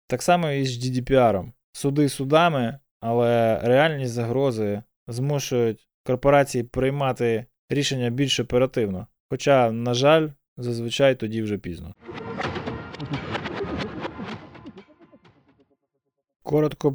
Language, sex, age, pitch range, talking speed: Ukrainian, male, 20-39, 115-135 Hz, 85 wpm